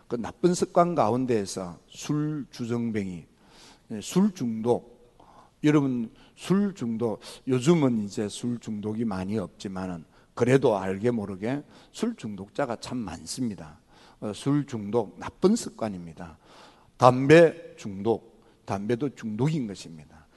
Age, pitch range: 50-69, 100-145 Hz